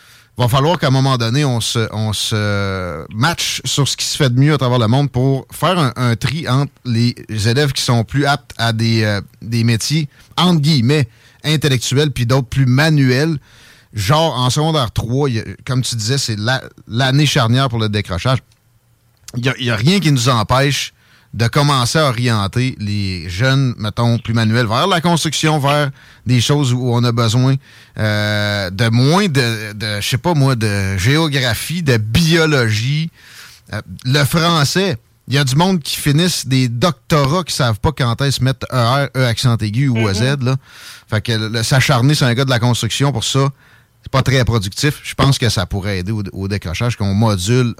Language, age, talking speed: French, 30-49, 190 wpm